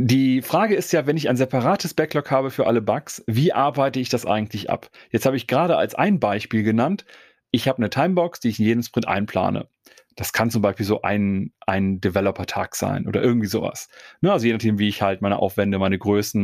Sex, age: male, 40-59